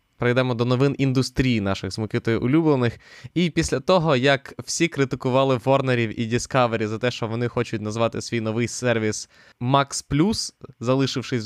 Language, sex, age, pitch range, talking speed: Ukrainian, male, 20-39, 115-135 Hz, 145 wpm